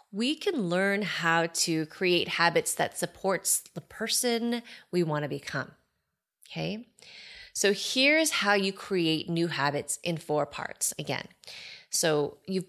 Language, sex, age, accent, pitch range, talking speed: English, female, 30-49, American, 160-220 Hz, 135 wpm